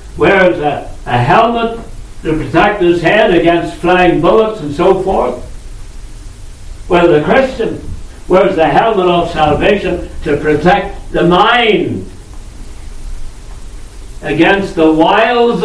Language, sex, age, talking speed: English, male, 60-79, 110 wpm